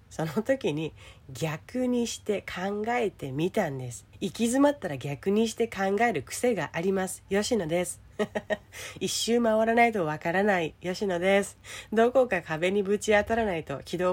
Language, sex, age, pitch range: Japanese, female, 40-59, 160-255 Hz